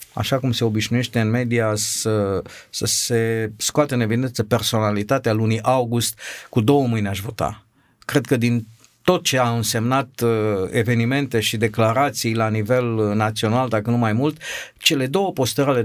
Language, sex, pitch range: Romanian, male, 110-140 Hz